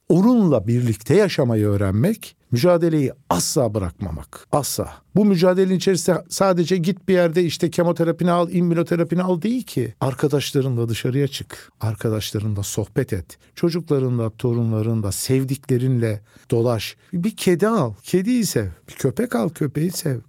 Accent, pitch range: native, 115-170 Hz